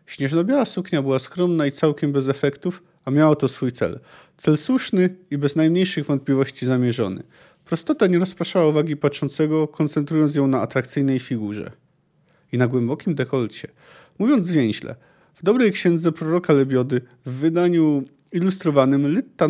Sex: male